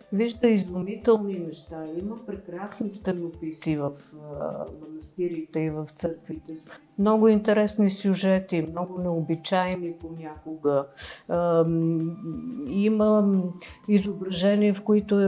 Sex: female